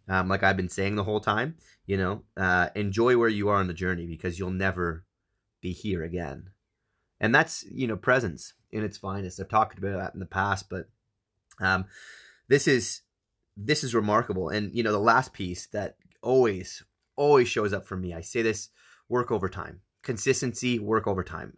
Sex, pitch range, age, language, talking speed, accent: male, 95-120 Hz, 30-49, English, 190 wpm, American